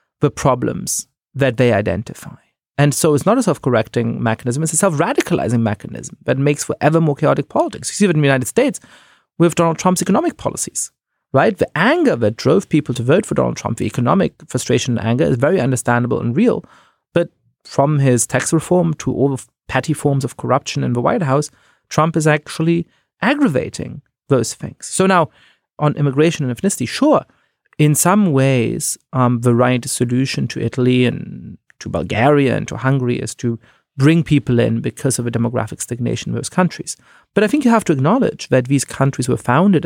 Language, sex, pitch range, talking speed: English, male, 120-165 Hz, 190 wpm